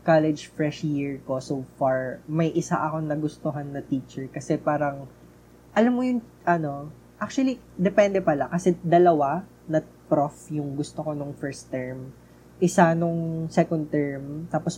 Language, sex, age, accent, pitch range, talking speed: Filipino, female, 20-39, native, 140-175 Hz, 145 wpm